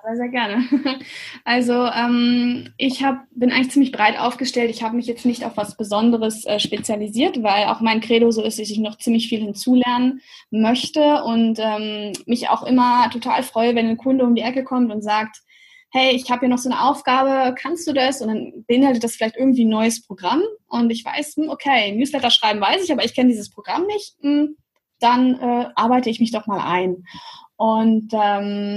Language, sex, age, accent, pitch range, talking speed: German, female, 20-39, German, 220-260 Hz, 195 wpm